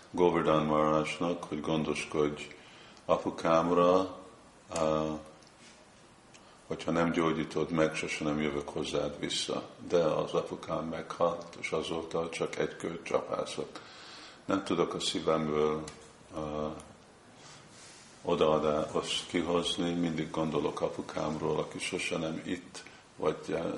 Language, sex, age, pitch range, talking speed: Hungarian, male, 50-69, 75-85 Hz, 95 wpm